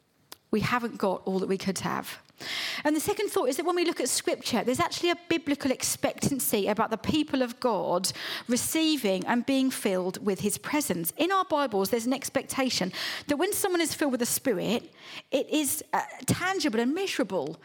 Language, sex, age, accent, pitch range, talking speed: English, female, 40-59, British, 205-285 Hz, 190 wpm